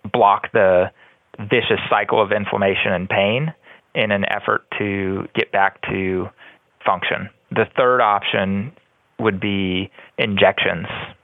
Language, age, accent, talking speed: English, 30-49, American, 115 wpm